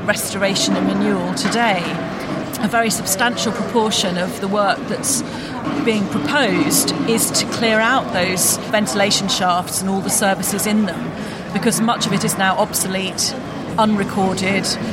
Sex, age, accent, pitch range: female, 40-59, British, 190-220 Hz